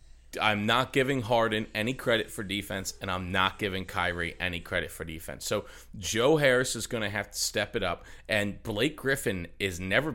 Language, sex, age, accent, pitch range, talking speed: English, male, 40-59, American, 90-130 Hz, 195 wpm